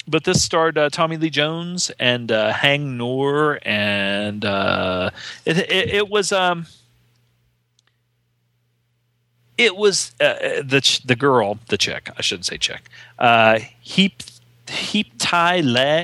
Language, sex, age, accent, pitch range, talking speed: English, male, 40-59, American, 115-150 Hz, 125 wpm